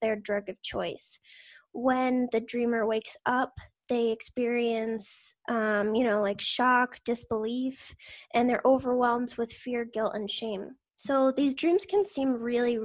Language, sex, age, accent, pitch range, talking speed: English, female, 10-29, American, 225-260 Hz, 145 wpm